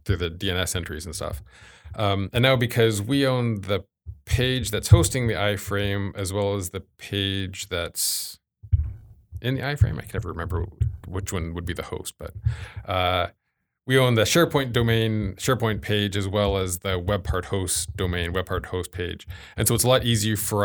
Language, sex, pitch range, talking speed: English, male, 90-105 Hz, 190 wpm